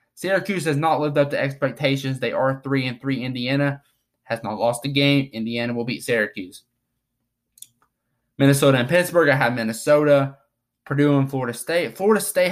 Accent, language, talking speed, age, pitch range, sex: American, English, 165 wpm, 20-39, 120-145 Hz, male